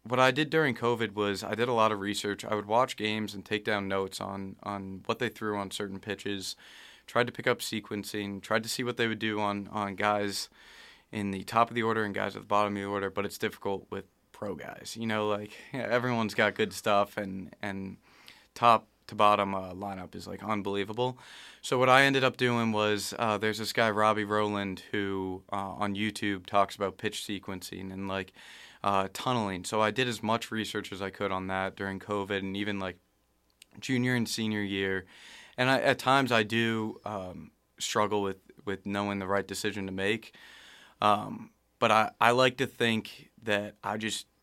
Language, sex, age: English, male, 20-39